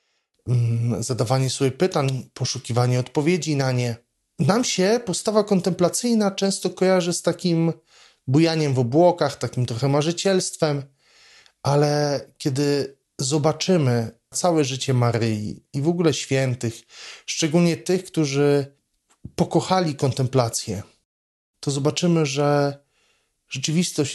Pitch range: 125-160 Hz